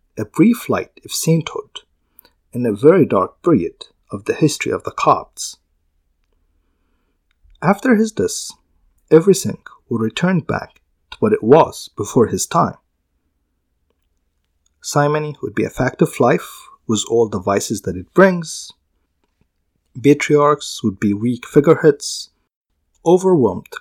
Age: 50-69